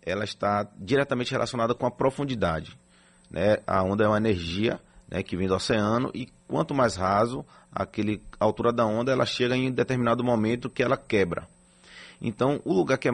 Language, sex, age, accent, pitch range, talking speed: Portuguese, male, 30-49, Brazilian, 105-130 Hz, 185 wpm